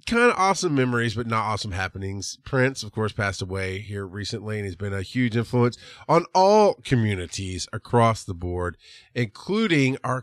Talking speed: 175 wpm